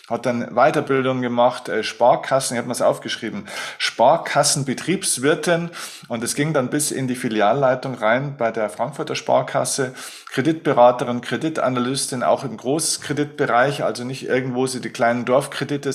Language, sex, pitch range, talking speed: German, male, 115-145 Hz, 135 wpm